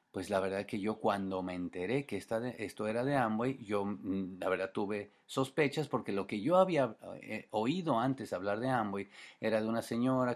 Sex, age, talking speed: male, 40-59, 195 wpm